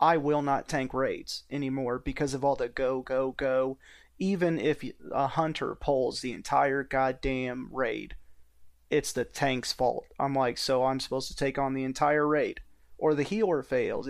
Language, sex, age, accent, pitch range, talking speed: English, male, 30-49, American, 130-150 Hz, 175 wpm